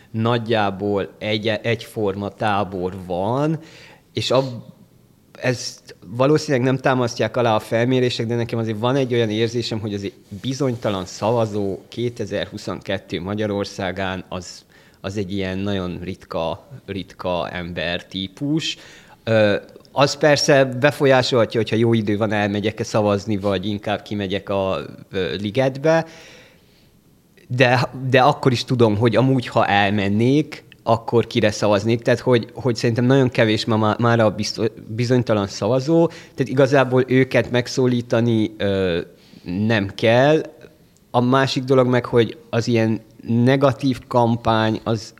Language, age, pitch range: Hungarian, 30-49, 105-125 Hz